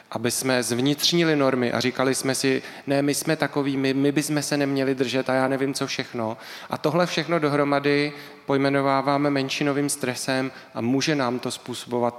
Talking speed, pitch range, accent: 170 wpm, 125-145 Hz, native